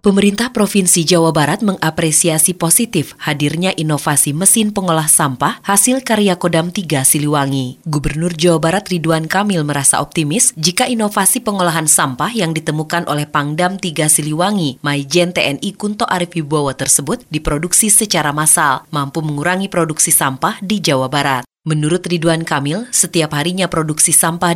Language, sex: Indonesian, female